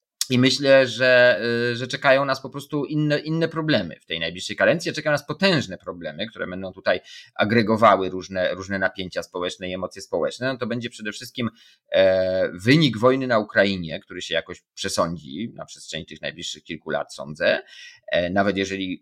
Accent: native